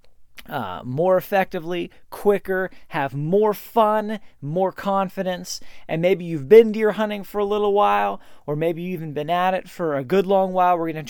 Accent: American